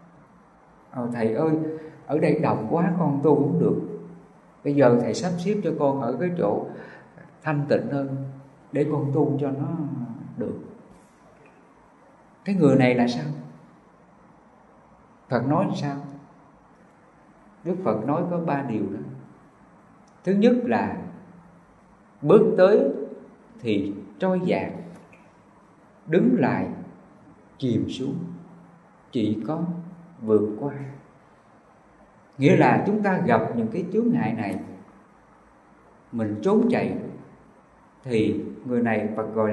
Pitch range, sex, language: 130-180 Hz, male, English